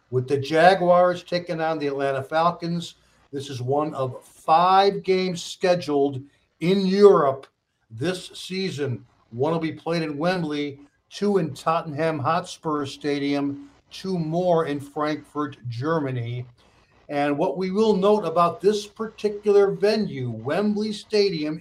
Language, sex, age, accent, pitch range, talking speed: English, male, 60-79, American, 140-180 Hz, 130 wpm